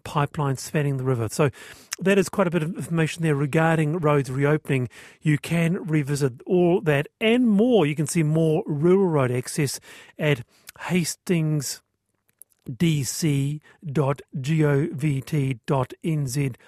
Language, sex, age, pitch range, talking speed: English, male, 40-59, 140-170 Hz, 115 wpm